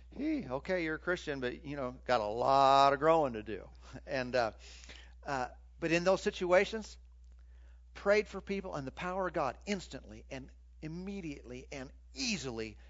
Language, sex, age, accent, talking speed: English, male, 50-69, American, 160 wpm